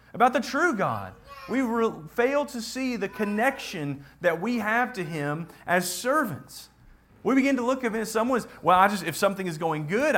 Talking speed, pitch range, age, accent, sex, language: 190 wpm, 120-195 Hz, 40-59, American, male, English